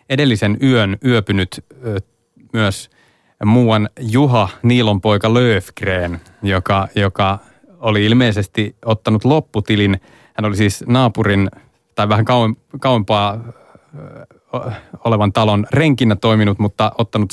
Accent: native